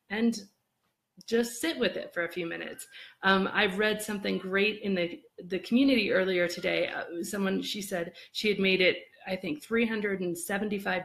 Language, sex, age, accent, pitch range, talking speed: English, female, 30-49, American, 180-220 Hz, 170 wpm